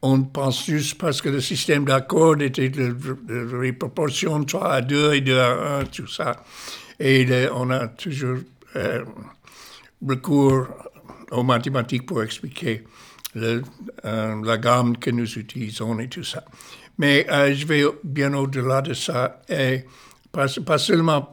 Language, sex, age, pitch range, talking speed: French, male, 60-79, 130-155 Hz, 165 wpm